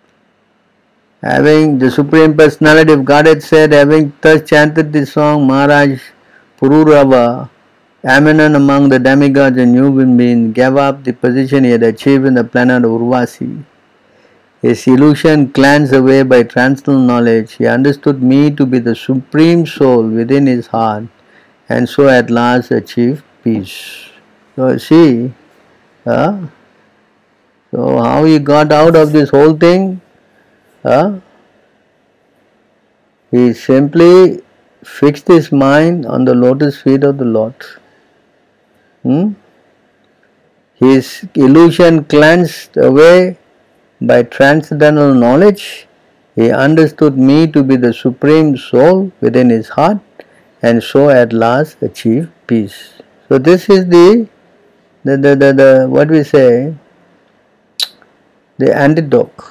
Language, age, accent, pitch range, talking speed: English, 50-69, Indian, 125-155 Hz, 115 wpm